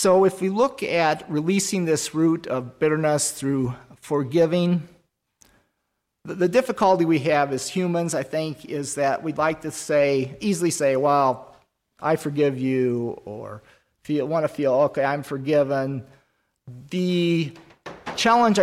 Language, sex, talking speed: English, male, 130 wpm